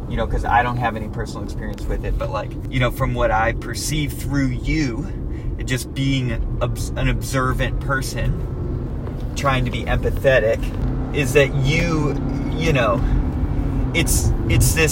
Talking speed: 145 wpm